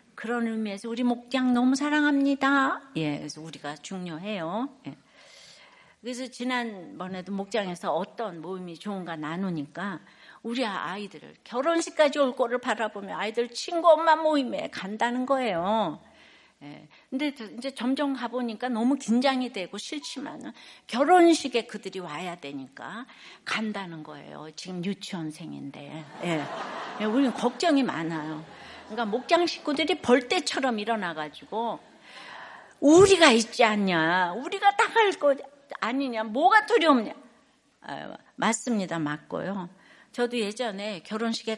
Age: 60-79